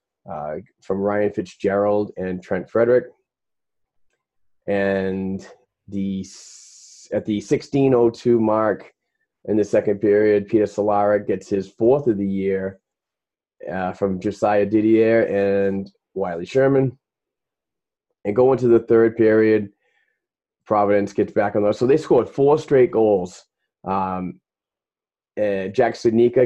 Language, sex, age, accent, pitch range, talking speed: English, male, 30-49, American, 95-110 Hz, 120 wpm